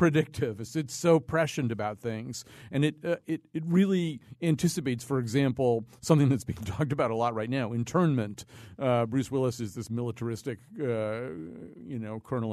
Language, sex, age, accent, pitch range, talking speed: English, male, 50-69, American, 115-150 Hz, 170 wpm